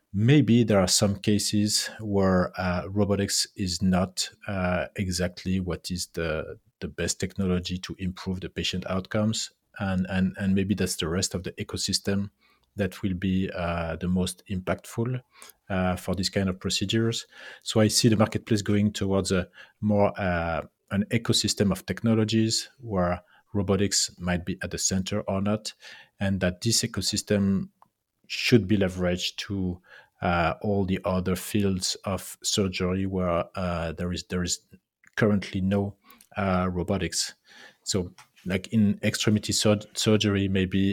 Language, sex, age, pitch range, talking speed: English, male, 40-59, 90-105 Hz, 150 wpm